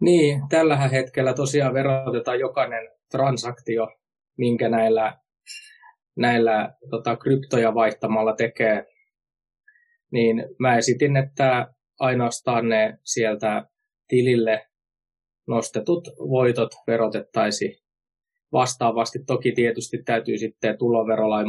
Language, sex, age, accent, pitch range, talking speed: Finnish, male, 20-39, native, 110-135 Hz, 85 wpm